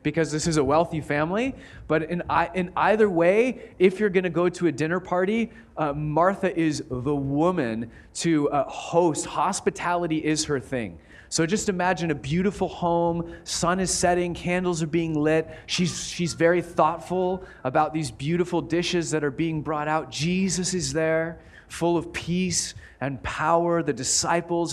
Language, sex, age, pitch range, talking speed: English, male, 20-39, 150-175 Hz, 165 wpm